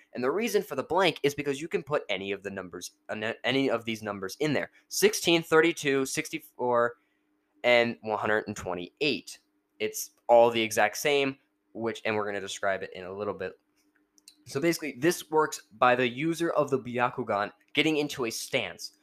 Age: 10-29